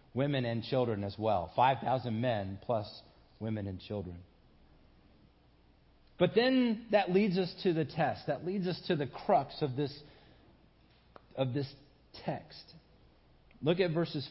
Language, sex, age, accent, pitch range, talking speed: English, male, 40-59, American, 115-170 Hz, 140 wpm